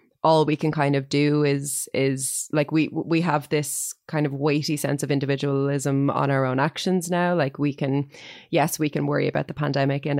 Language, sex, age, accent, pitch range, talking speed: English, female, 20-39, Irish, 140-160 Hz, 205 wpm